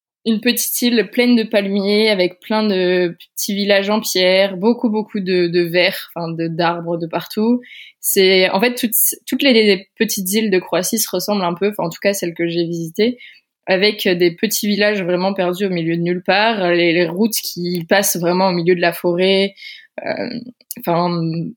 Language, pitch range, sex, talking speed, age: French, 175-215 Hz, female, 185 wpm, 20-39